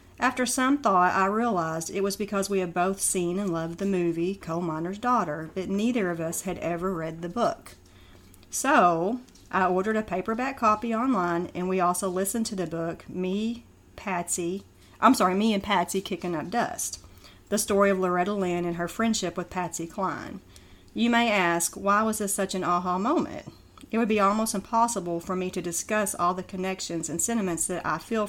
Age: 40-59